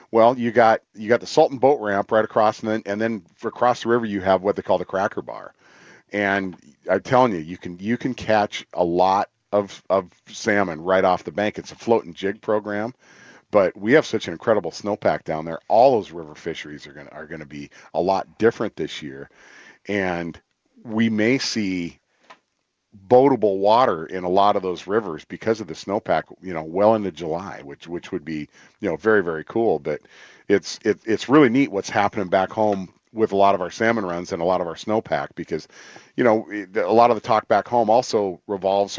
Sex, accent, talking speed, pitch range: male, American, 210 wpm, 90-110 Hz